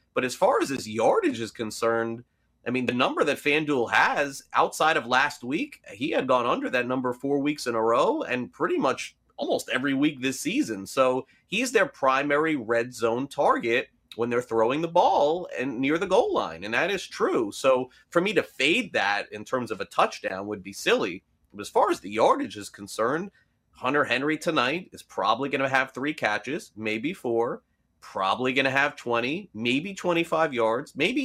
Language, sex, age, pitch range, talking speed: English, male, 30-49, 115-150 Hz, 195 wpm